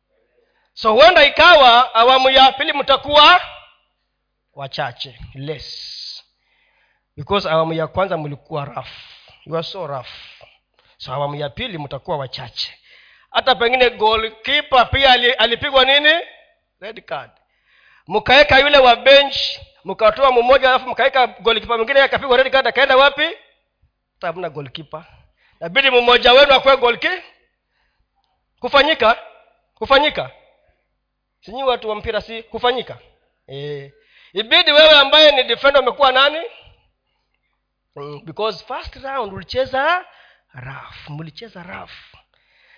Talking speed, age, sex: 110 wpm, 40-59, male